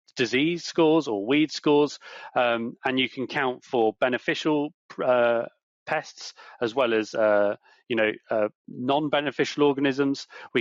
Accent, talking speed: British, 135 wpm